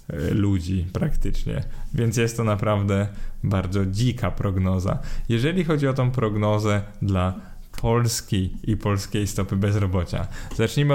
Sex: male